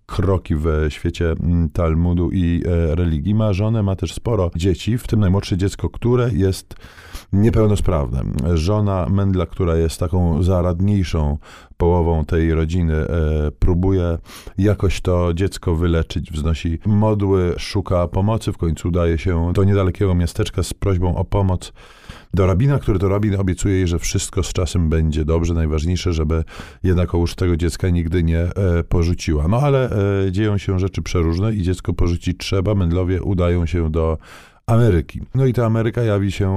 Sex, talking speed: male, 150 wpm